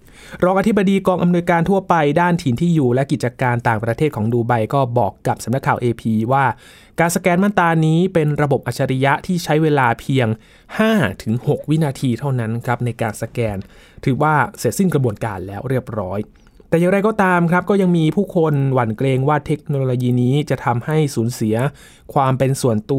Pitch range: 120-155 Hz